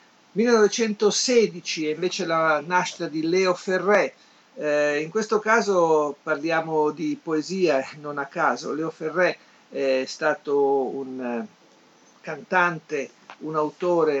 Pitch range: 140-180 Hz